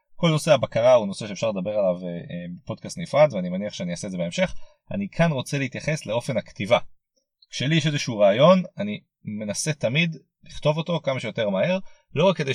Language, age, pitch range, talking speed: Hebrew, 30-49, 125-185 Hz, 180 wpm